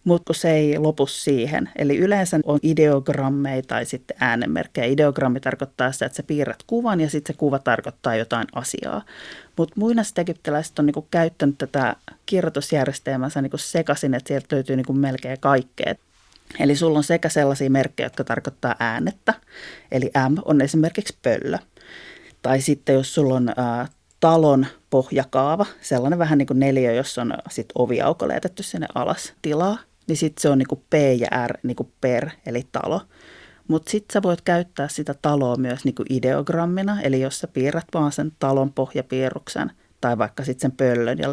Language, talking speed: Finnish, 160 wpm